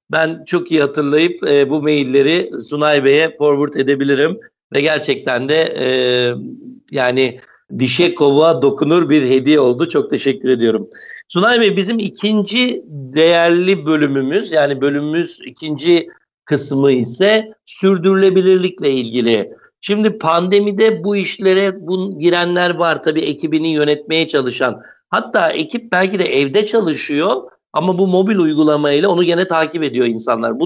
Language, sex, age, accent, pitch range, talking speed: Turkish, male, 60-79, native, 145-185 Hz, 125 wpm